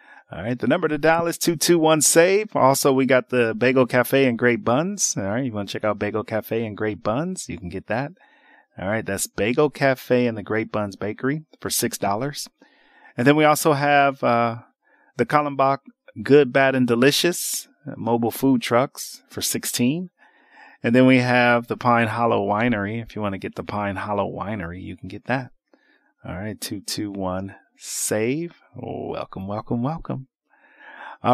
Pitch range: 110-145 Hz